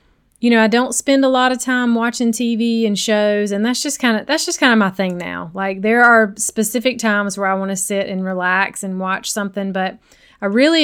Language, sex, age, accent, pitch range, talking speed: English, female, 30-49, American, 190-250 Hz, 240 wpm